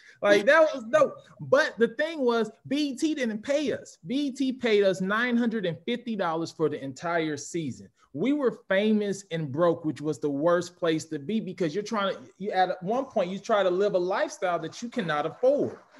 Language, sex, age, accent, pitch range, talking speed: English, male, 20-39, American, 170-225 Hz, 190 wpm